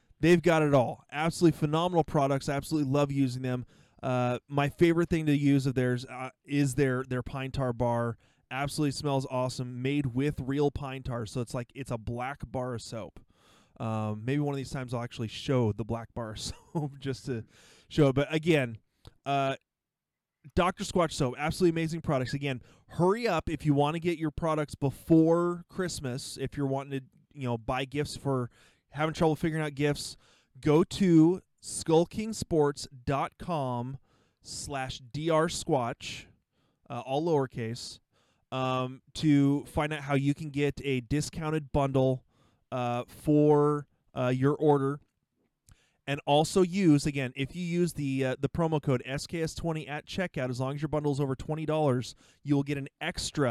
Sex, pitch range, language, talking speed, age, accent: male, 125-155 Hz, English, 165 wpm, 20-39, American